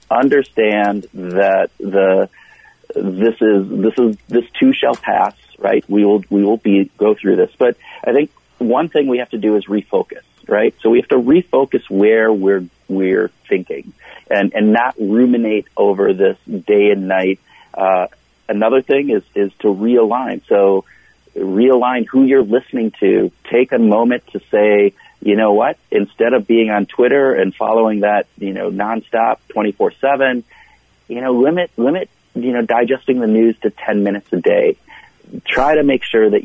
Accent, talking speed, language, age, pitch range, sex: American, 170 wpm, English, 40-59, 100-140 Hz, male